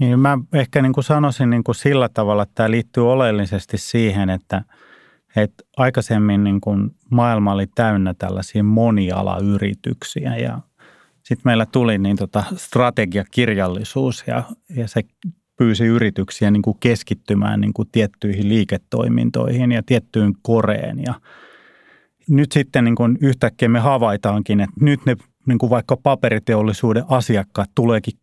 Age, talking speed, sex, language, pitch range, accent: 30-49, 100 wpm, male, Finnish, 105-130 Hz, native